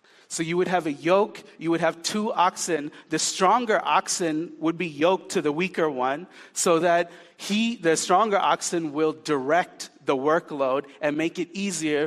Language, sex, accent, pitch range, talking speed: English, male, American, 165-210 Hz, 175 wpm